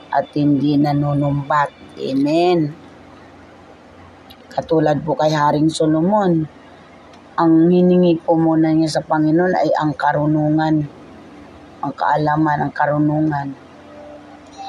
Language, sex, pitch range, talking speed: Filipino, female, 150-170 Hz, 95 wpm